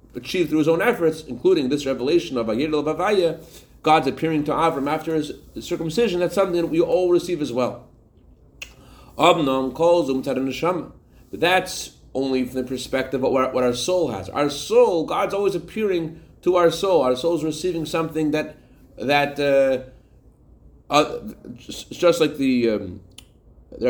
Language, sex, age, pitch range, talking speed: English, male, 30-49, 125-170 Hz, 150 wpm